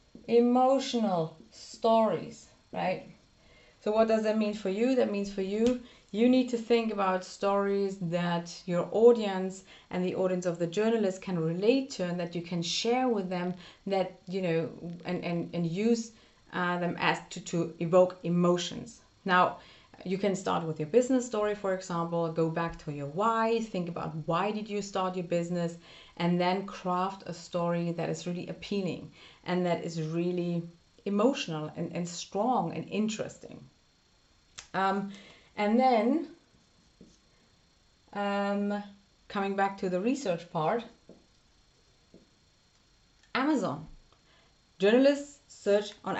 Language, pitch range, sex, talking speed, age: English, 175-215 Hz, female, 140 wpm, 30-49